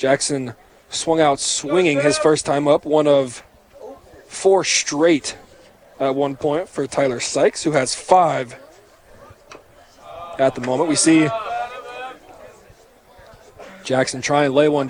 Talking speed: 125 wpm